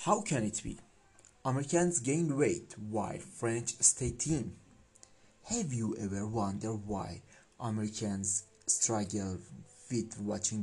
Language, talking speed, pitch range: Persian, 115 wpm, 110-145 Hz